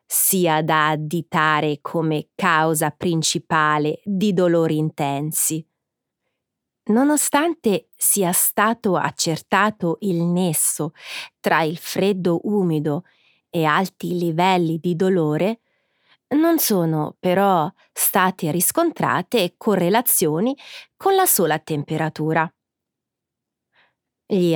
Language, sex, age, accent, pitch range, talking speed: Italian, female, 30-49, native, 160-215 Hz, 85 wpm